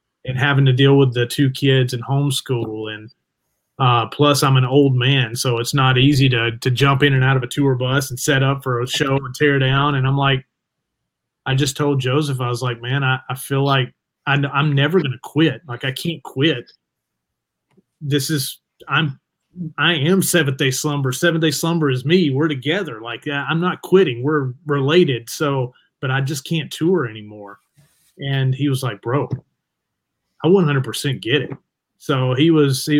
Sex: male